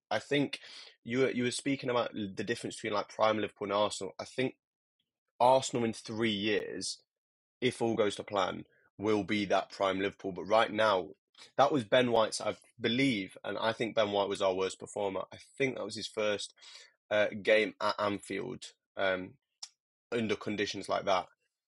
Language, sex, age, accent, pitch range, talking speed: English, male, 20-39, British, 100-120 Hz, 180 wpm